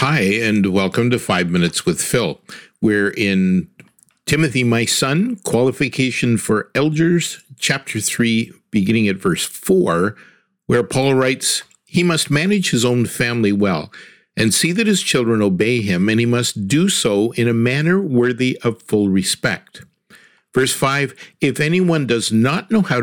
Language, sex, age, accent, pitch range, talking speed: English, male, 50-69, American, 110-155 Hz, 155 wpm